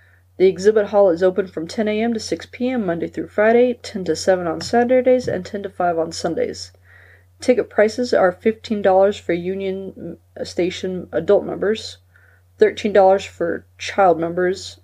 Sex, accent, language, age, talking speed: female, American, English, 20-39, 155 wpm